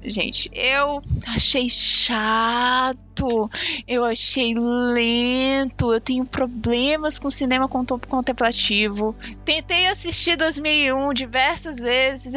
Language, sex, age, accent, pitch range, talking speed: Portuguese, female, 20-39, Brazilian, 225-275 Hz, 85 wpm